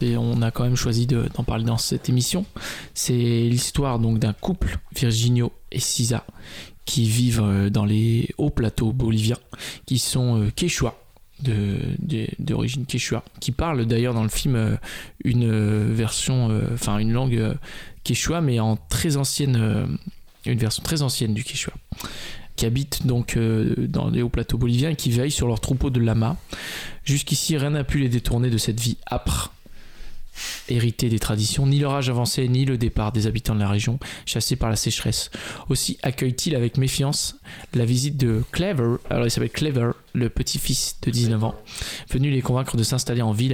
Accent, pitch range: French, 110-130 Hz